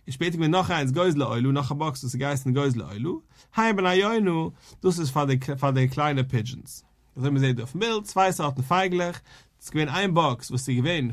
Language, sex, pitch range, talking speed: English, male, 130-195 Hz, 200 wpm